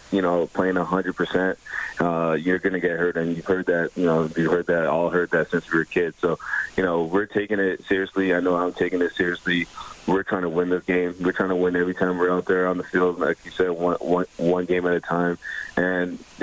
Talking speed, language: 245 wpm, English